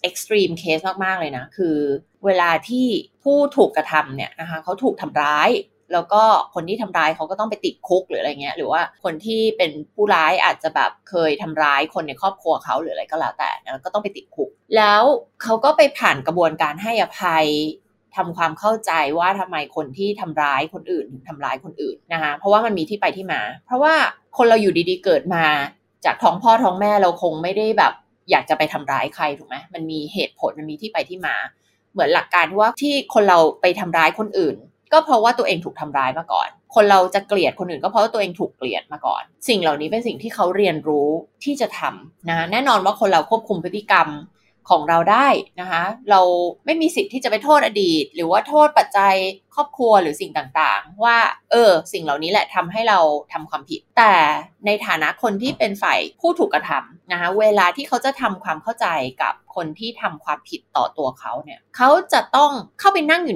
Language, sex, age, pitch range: Thai, female, 20-39, 165-230 Hz